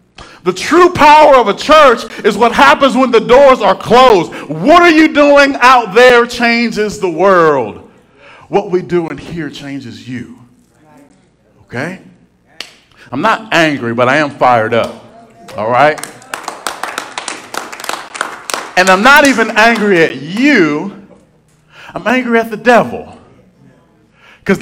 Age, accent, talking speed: 40-59, American, 130 wpm